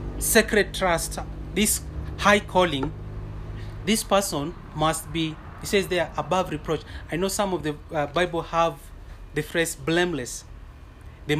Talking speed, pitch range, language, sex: 140 wpm, 125-185 Hz, English, male